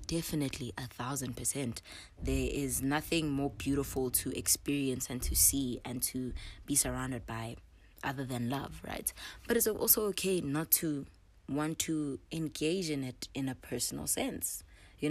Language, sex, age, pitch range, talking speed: English, female, 20-39, 120-150 Hz, 155 wpm